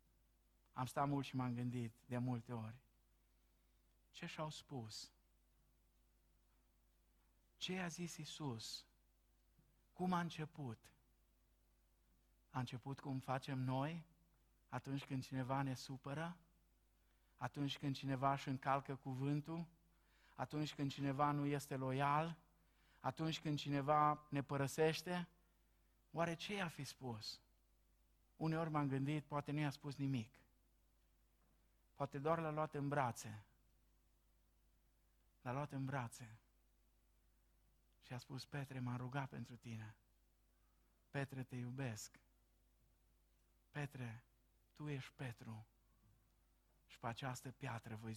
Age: 50-69